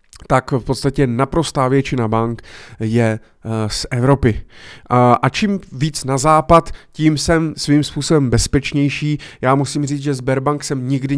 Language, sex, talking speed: Czech, male, 140 wpm